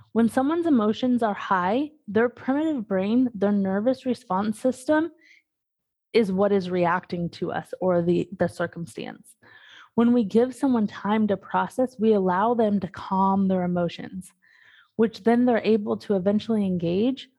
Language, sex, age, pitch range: English, female, 20-39, 190-240 Hz